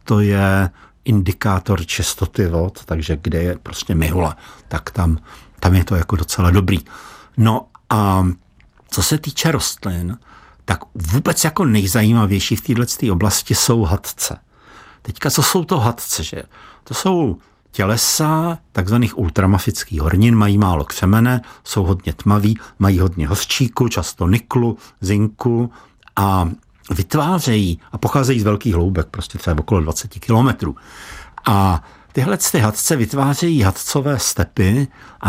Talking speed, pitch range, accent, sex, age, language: 130 wpm, 95-120 Hz, native, male, 60-79, Czech